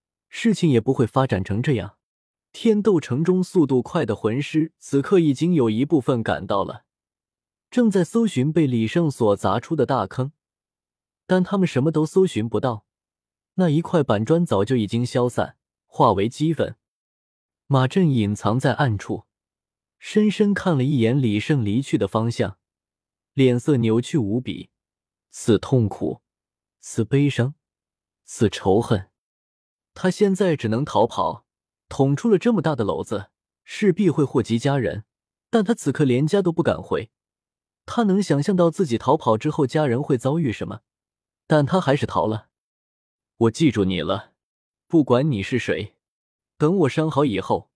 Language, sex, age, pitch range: Chinese, male, 20-39, 110-160 Hz